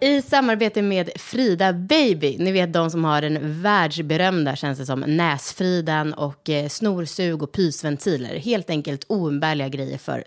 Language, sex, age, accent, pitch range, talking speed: English, female, 30-49, Swedish, 155-210 Hz, 145 wpm